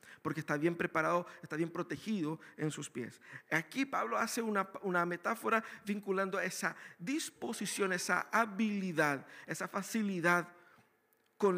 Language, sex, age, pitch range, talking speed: Spanish, male, 50-69, 175-225 Hz, 125 wpm